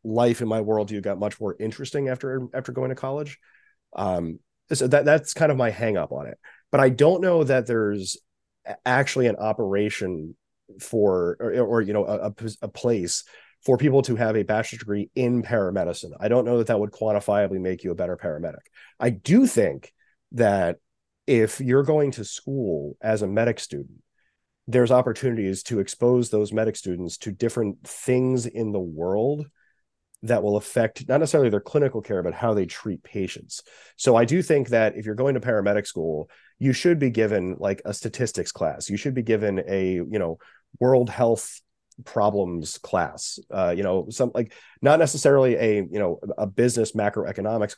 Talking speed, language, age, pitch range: 180 wpm, English, 30-49, 105-125 Hz